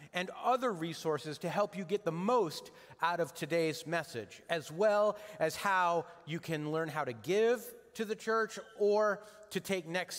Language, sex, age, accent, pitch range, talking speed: English, male, 30-49, American, 165-205 Hz, 175 wpm